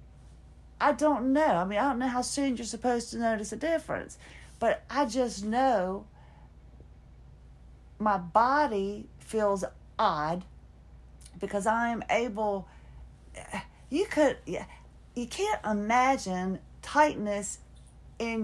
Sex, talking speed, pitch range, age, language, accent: female, 110 wpm, 150-240 Hz, 40-59, English, American